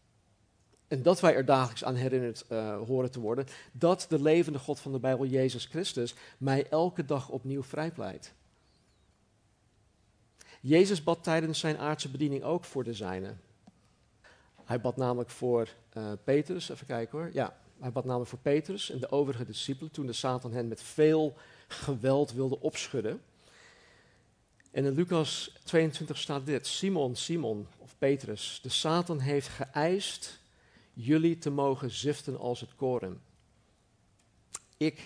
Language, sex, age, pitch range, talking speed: Dutch, male, 50-69, 115-150 Hz, 145 wpm